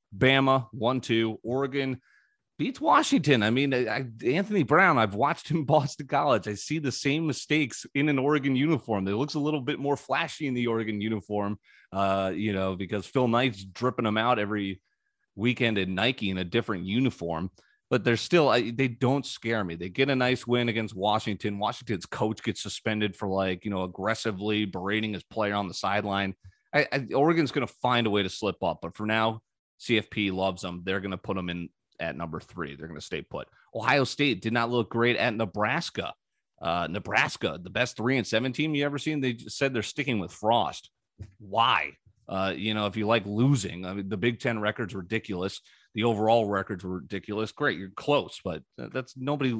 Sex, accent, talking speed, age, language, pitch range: male, American, 190 wpm, 30-49, English, 100-130 Hz